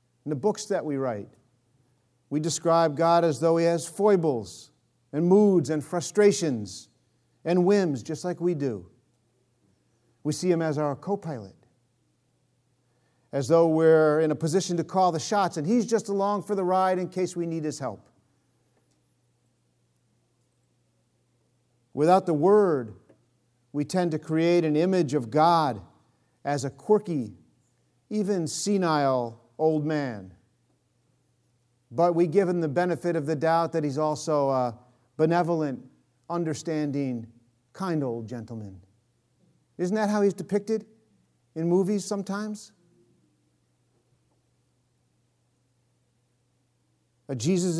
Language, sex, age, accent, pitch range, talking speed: English, male, 50-69, American, 125-175 Hz, 125 wpm